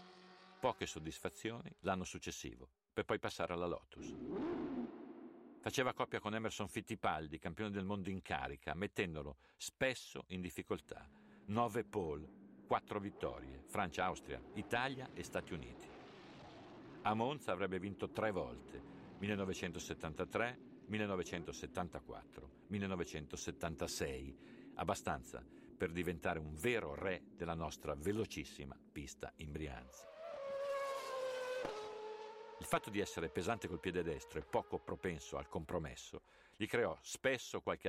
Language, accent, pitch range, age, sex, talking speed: Italian, native, 85-115 Hz, 50-69, male, 110 wpm